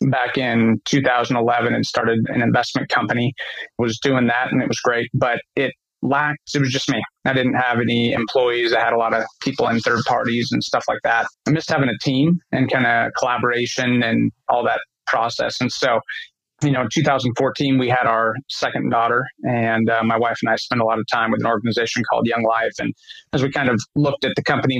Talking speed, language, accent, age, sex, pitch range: 220 wpm, English, American, 30-49, male, 120-140 Hz